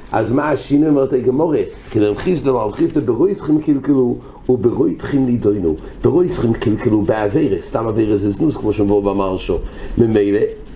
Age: 60-79